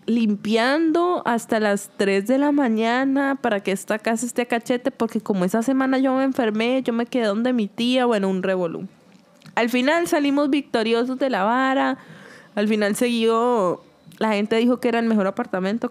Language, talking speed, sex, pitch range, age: Spanish, 180 wpm, female, 215-275 Hz, 20-39